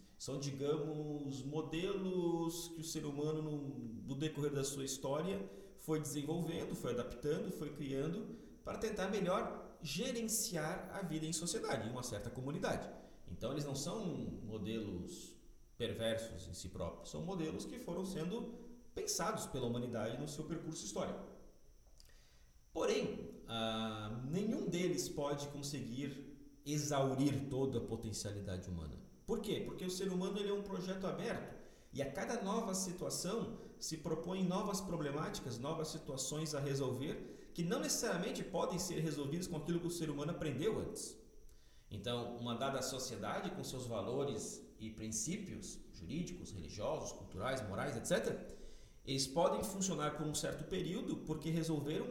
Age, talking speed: 40-59, 140 wpm